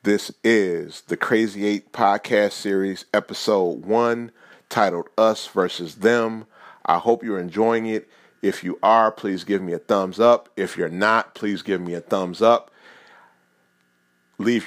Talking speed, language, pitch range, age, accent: 150 wpm, English, 95-120 Hz, 30-49, American